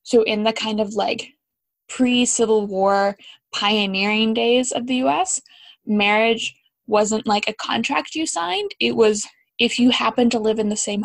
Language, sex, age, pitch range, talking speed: English, female, 10-29, 200-235 Hz, 165 wpm